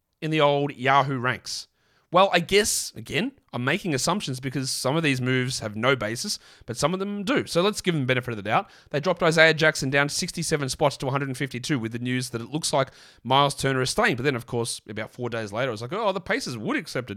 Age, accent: 30-49, Australian